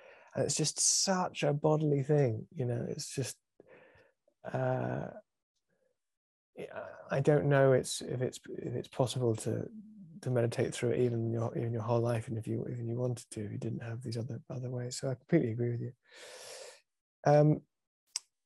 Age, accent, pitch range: 20-39, British, 115-140 Hz